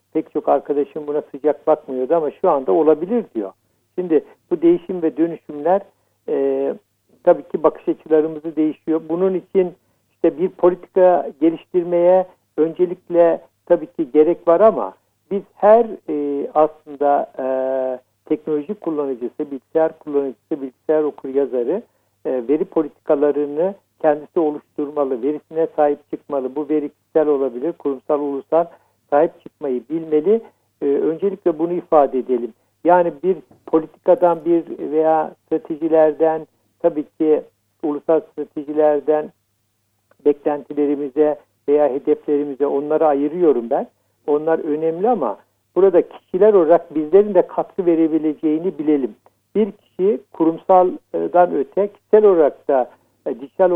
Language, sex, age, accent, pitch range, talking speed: Turkish, male, 60-79, native, 145-175 Hz, 115 wpm